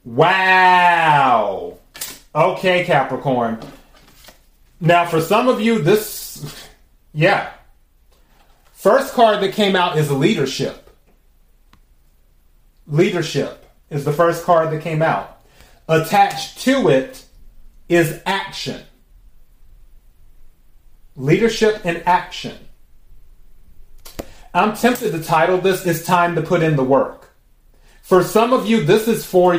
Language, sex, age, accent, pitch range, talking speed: English, male, 30-49, American, 155-185 Hz, 105 wpm